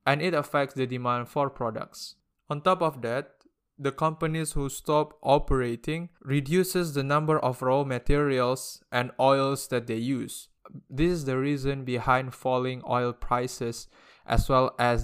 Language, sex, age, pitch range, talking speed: English, male, 20-39, 125-150 Hz, 150 wpm